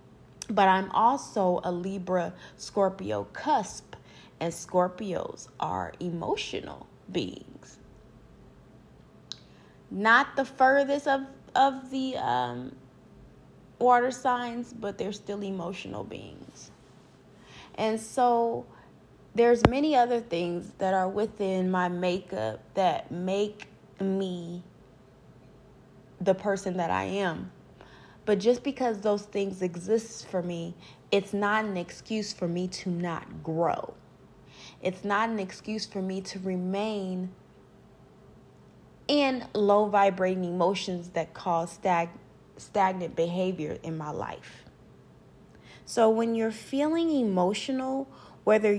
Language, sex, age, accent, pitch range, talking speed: English, female, 20-39, American, 180-225 Hz, 105 wpm